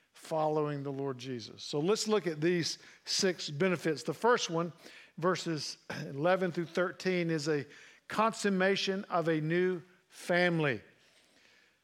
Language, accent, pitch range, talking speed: English, American, 170-205 Hz, 125 wpm